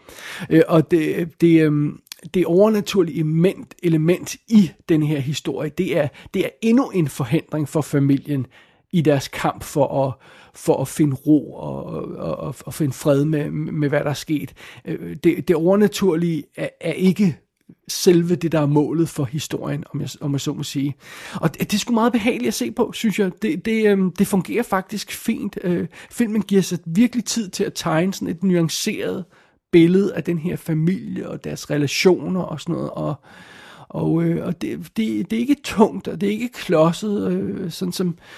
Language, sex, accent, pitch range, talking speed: Danish, male, native, 150-195 Hz, 185 wpm